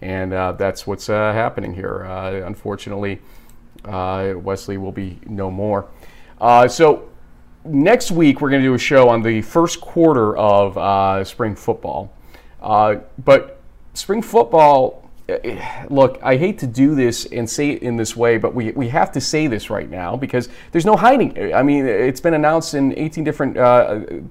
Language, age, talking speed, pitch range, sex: English, 40-59, 175 wpm, 105-140 Hz, male